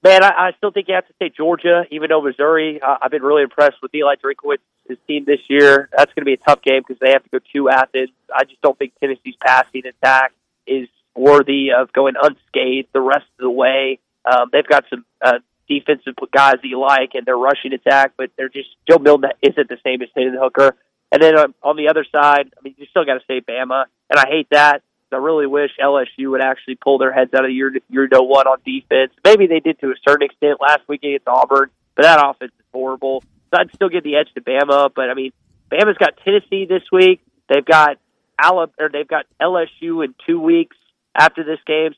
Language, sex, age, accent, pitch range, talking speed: English, male, 30-49, American, 135-190 Hz, 235 wpm